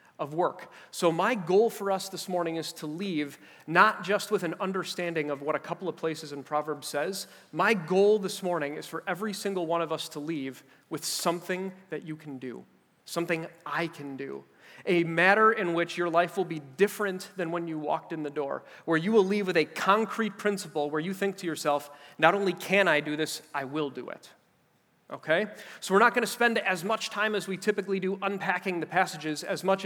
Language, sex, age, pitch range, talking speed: English, male, 30-49, 155-195 Hz, 215 wpm